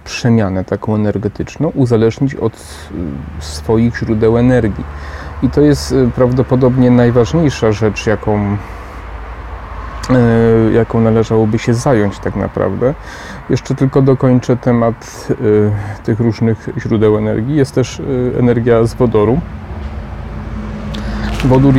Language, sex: Polish, male